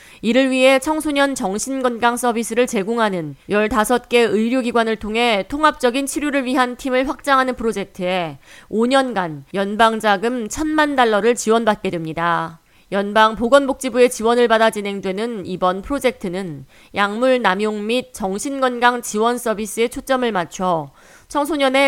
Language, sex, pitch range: Korean, female, 190-250 Hz